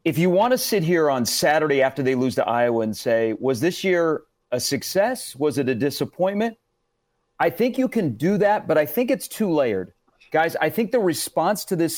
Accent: American